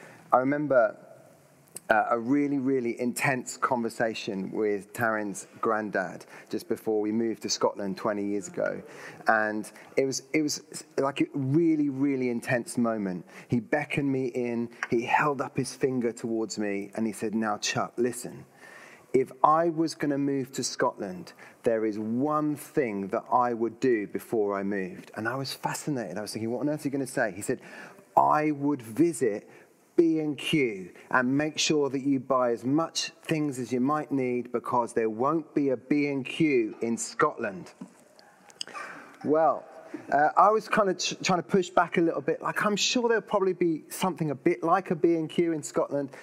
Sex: male